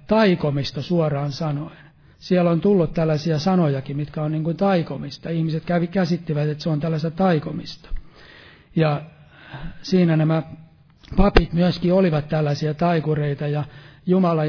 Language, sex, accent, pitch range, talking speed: Finnish, male, native, 150-180 Hz, 130 wpm